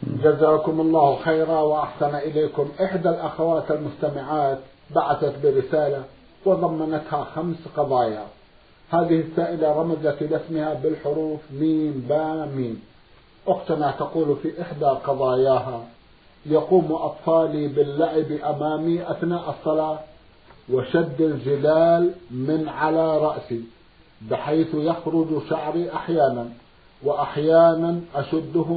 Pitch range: 145-165 Hz